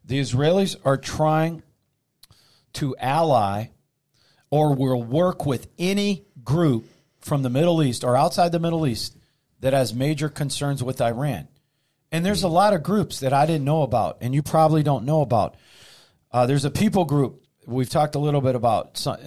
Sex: male